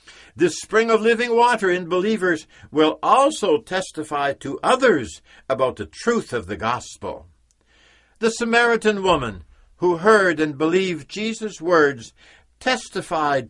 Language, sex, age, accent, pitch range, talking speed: English, male, 60-79, American, 115-190 Hz, 125 wpm